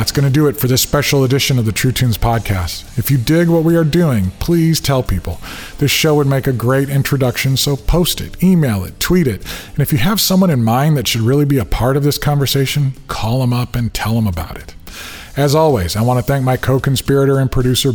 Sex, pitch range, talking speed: male, 110-135 Hz, 240 wpm